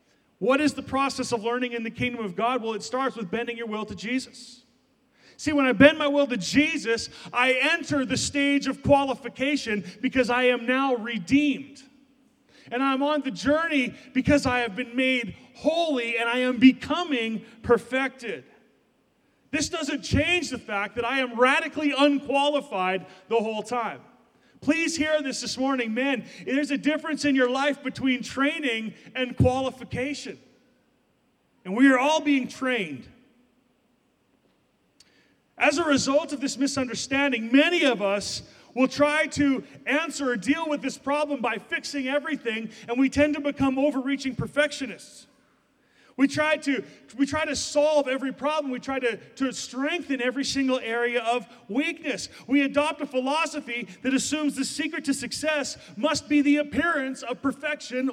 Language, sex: English, male